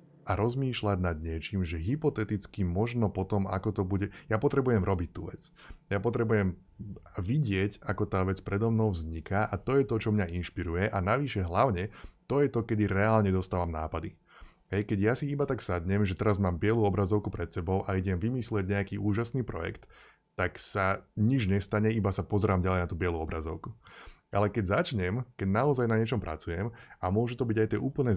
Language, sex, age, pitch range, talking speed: Slovak, male, 20-39, 95-110 Hz, 190 wpm